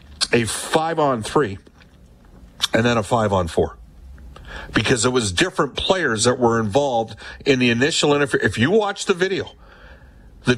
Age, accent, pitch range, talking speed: 50-69, American, 105-140 Hz, 130 wpm